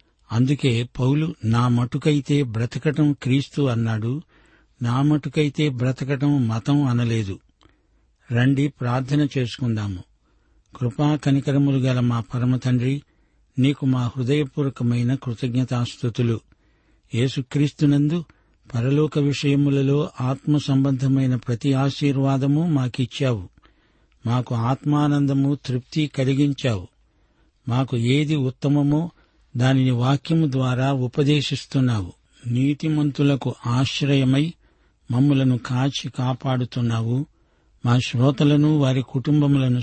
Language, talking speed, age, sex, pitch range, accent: Telugu, 80 wpm, 50-69, male, 125-145 Hz, native